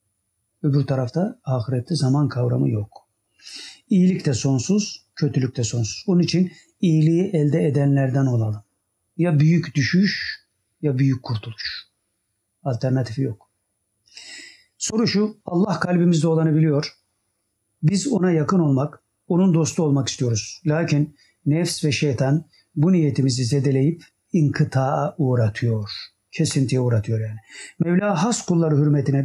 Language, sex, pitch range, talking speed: Turkish, male, 120-165 Hz, 115 wpm